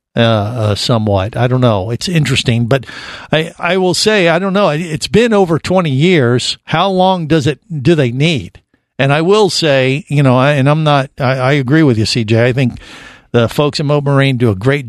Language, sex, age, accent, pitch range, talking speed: English, male, 50-69, American, 115-145 Hz, 220 wpm